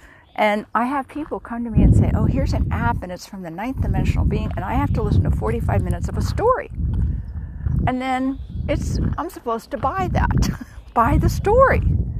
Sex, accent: female, American